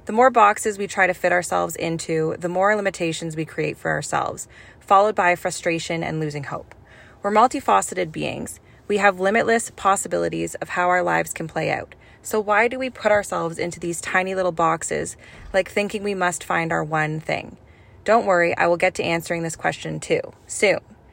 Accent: American